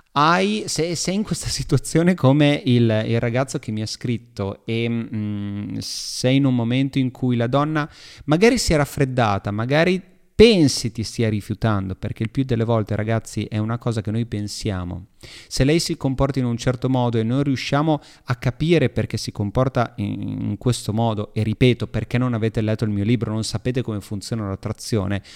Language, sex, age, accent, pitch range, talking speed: Italian, male, 30-49, native, 105-130 Hz, 180 wpm